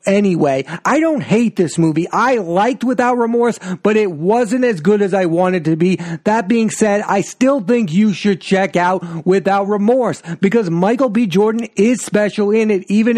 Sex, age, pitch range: male, 40-59, 170-210 Hz